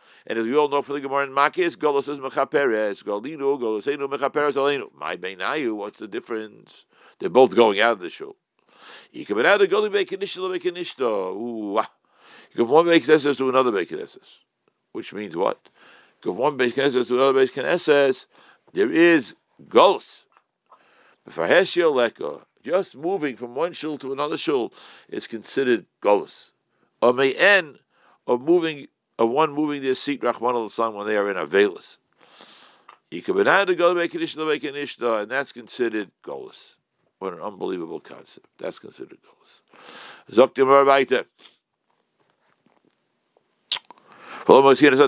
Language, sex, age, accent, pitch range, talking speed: English, male, 60-79, American, 130-185 Hz, 135 wpm